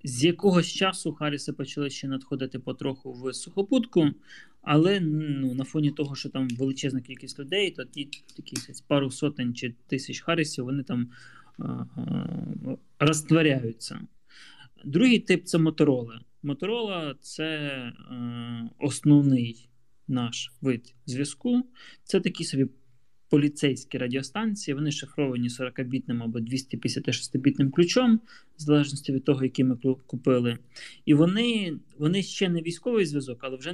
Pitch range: 130-165 Hz